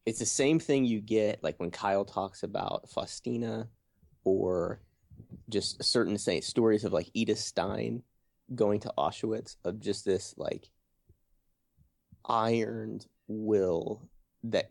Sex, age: male, 30-49